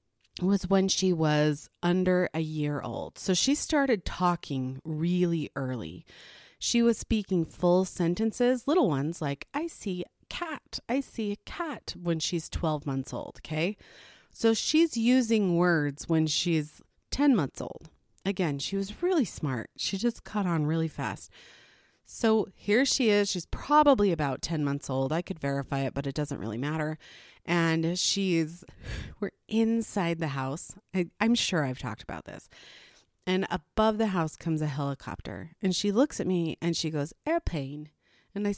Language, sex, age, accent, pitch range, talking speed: English, female, 30-49, American, 150-220 Hz, 160 wpm